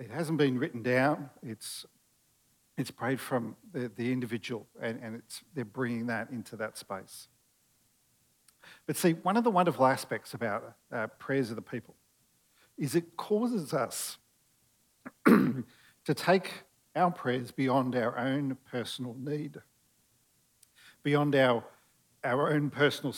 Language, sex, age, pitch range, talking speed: English, male, 50-69, 125-160 Hz, 135 wpm